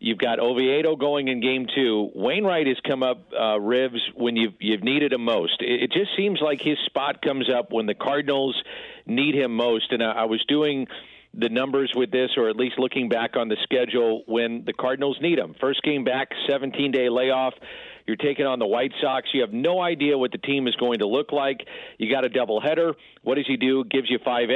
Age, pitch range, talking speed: 50-69, 120-140 Hz, 220 wpm